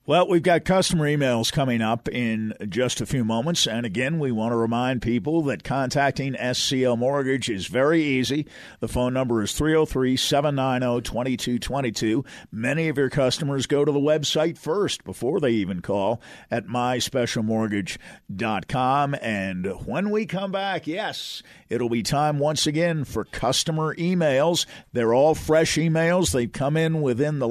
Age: 50-69